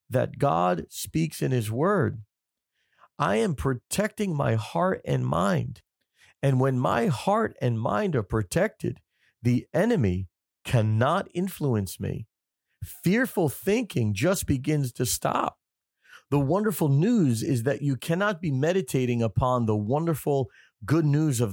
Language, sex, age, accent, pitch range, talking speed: English, male, 40-59, American, 115-155 Hz, 130 wpm